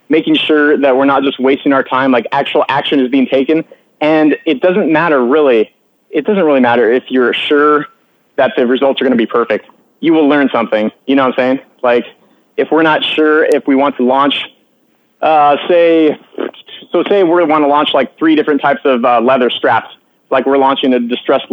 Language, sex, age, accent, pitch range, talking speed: English, male, 30-49, American, 135-160 Hz, 210 wpm